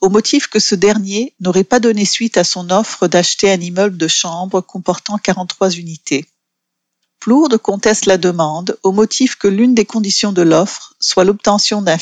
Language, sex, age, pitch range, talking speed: English, female, 40-59, 175-220 Hz, 175 wpm